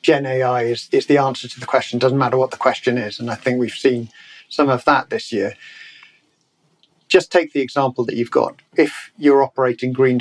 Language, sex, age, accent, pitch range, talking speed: English, male, 50-69, British, 115-140 Hz, 210 wpm